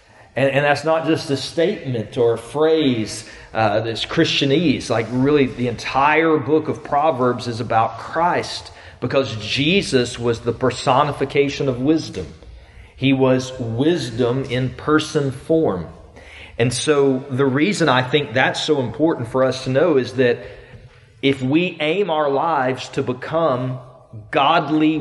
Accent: American